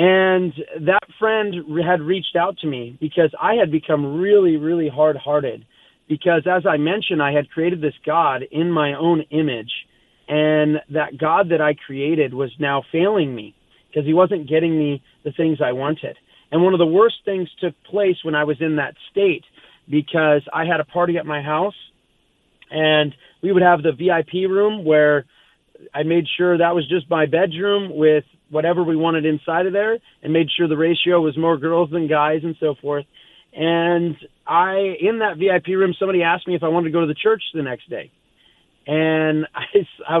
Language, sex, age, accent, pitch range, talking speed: English, male, 30-49, American, 150-180 Hz, 190 wpm